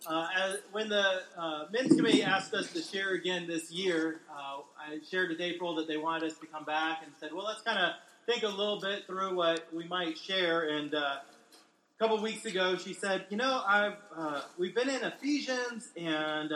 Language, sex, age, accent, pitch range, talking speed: English, male, 30-49, American, 160-235 Hz, 210 wpm